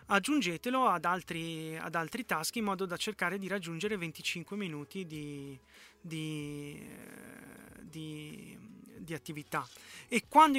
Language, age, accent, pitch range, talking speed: Italian, 30-49, native, 180-230 Hz, 115 wpm